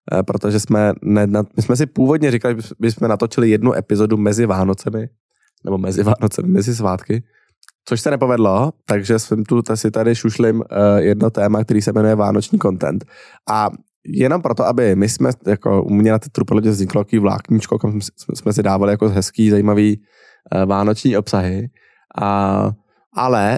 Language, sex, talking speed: Czech, male, 145 wpm